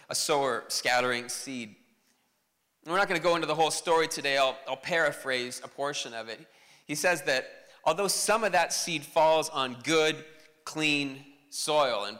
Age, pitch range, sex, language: 30-49, 140-195 Hz, male, English